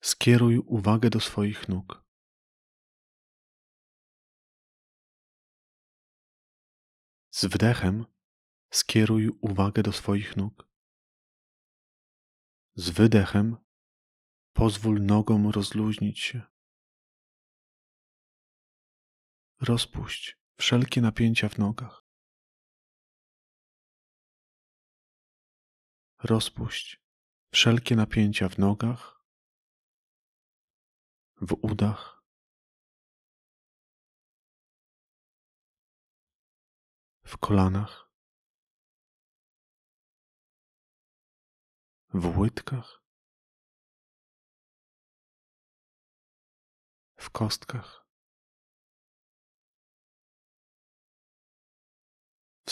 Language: Polish